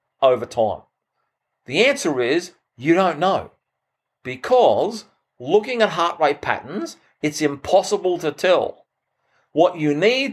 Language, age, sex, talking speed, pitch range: English, 40-59, male, 120 wpm, 145-215 Hz